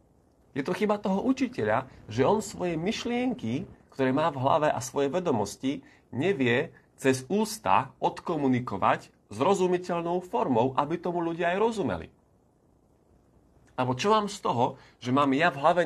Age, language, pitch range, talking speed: 30-49, Slovak, 115-155 Hz, 145 wpm